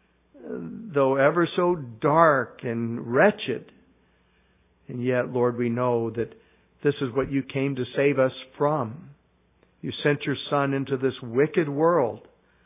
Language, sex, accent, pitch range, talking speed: English, male, American, 120-150 Hz, 140 wpm